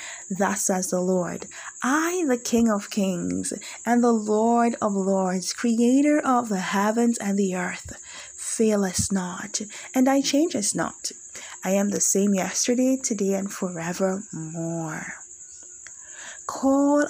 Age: 20-39